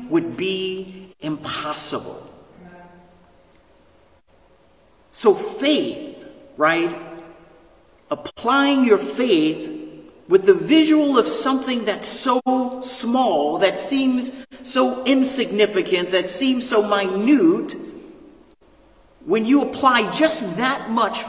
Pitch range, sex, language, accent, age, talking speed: 190-285 Hz, male, English, American, 40-59, 85 wpm